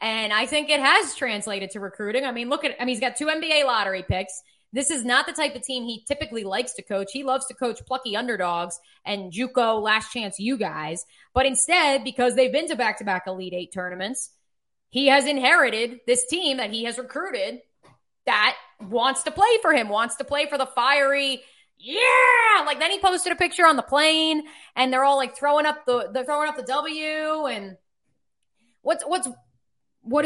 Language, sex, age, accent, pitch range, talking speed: English, female, 20-39, American, 195-280 Hz, 200 wpm